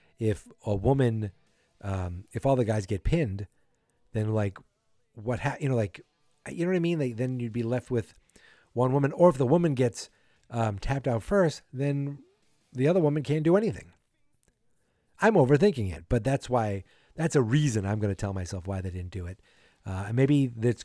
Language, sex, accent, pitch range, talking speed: English, male, American, 100-130 Hz, 200 wpm